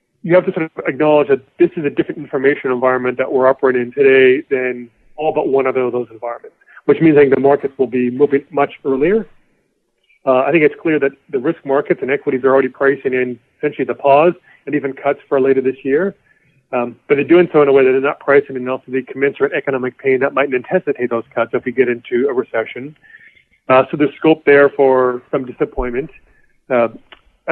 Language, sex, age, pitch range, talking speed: English, male, 30-49, 130-160 Hz, 215 wpm